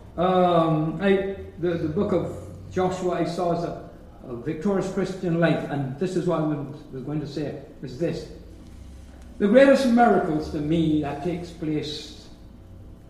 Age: 60-79